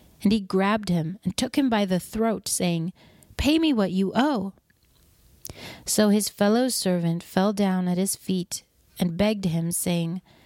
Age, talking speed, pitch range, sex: 30-49, 165 wpm, 175-210 Hz, female